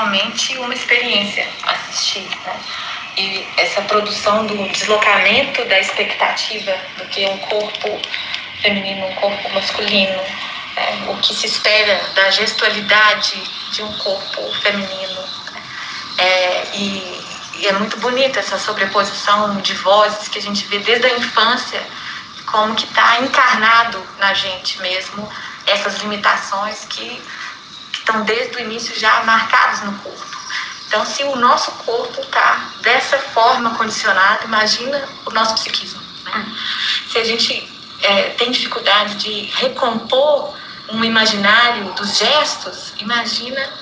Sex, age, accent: female, 20-39, Brazilian